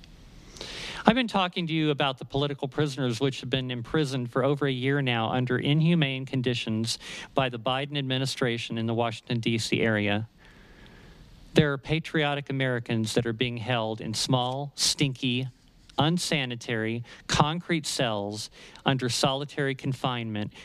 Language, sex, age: English, male, 40-59